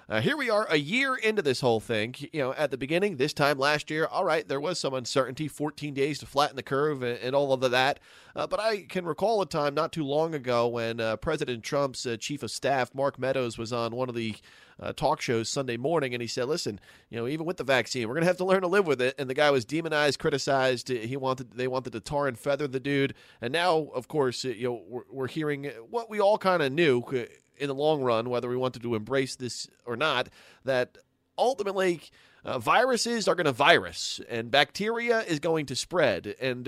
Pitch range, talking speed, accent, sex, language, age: 125-165 Hz, 235 wpm, American, male, English, 30-49